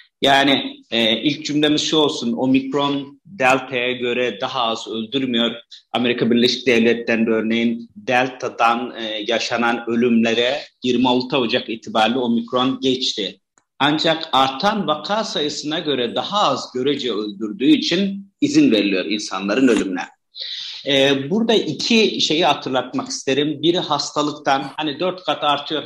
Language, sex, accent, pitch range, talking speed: Turkish, male, native, 120-155 Hz, 120 wpm